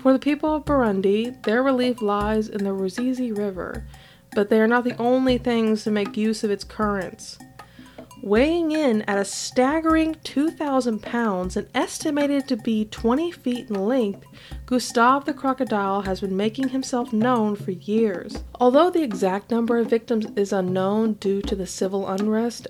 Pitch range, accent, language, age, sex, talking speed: 195-250 Hz, American, English, 20-39, female, 165 wpm